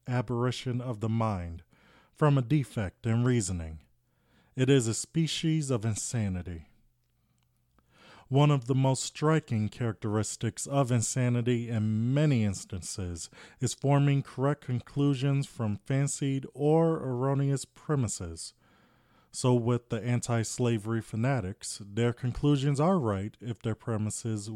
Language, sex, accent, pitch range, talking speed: English, male, American, 105-135 Hz, 115 wpm